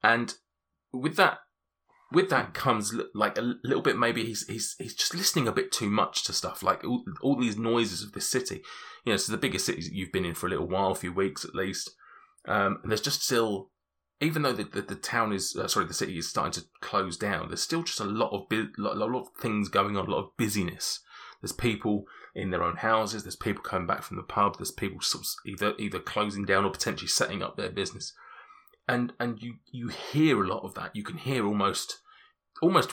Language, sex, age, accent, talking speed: English, male, 20-39, British, 235 wpm